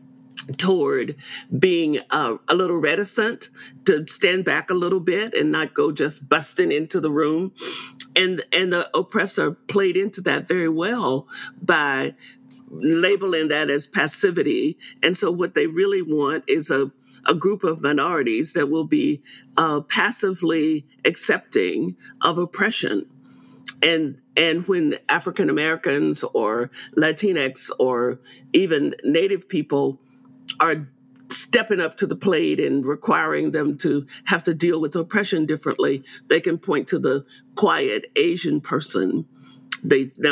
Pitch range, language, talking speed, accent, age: 135-205 Hz, English, 135 wpm, American, 50-69